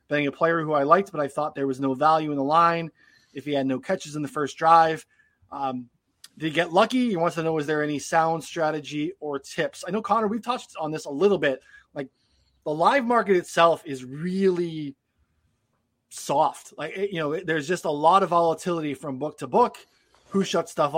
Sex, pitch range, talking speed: male, 140-170 Hz, 215 wpm